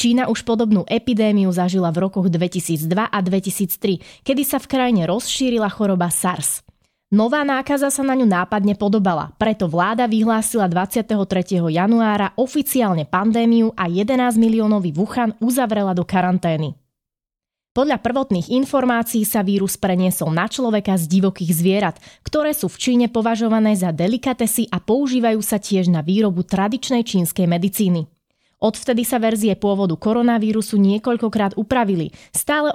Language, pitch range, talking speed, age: Slovak, 185-235 Hz, 135 wpm, 20-39